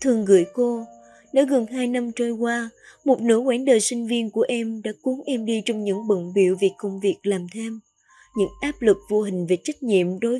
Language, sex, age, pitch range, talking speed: Vietnamese, female, 20-39, 205-260 Hz, 225 wpm